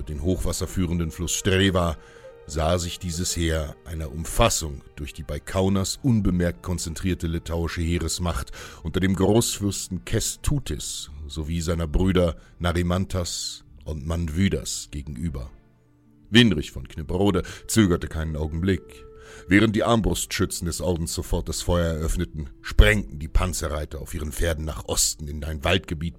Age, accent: 60-79, German